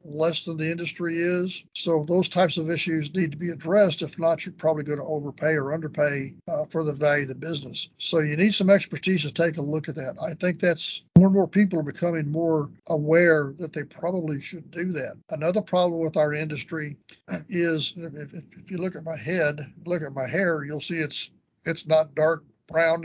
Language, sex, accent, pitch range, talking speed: English, male, American, 150-175 Hz, 215 wpm